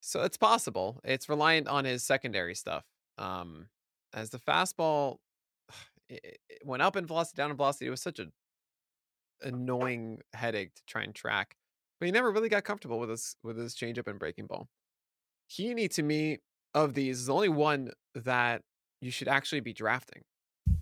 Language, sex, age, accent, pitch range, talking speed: English, male, 20-39, American, 105-135 Hz, 175 wpm